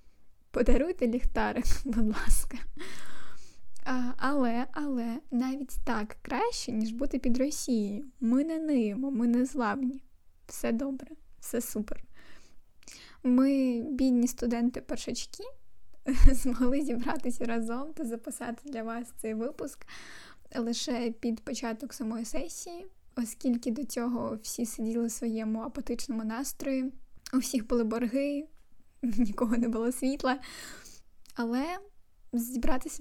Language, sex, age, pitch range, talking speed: Ukrainian, female, 10-29, 235-270 Hz, 105 wpm